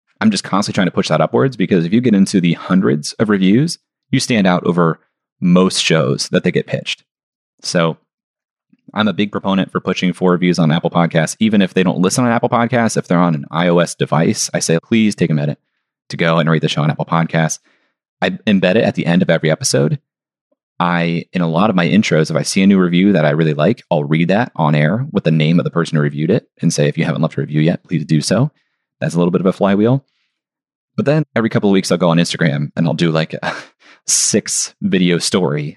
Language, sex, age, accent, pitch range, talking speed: English, male, 30-49, American, 80-105 Hz, 245 wpm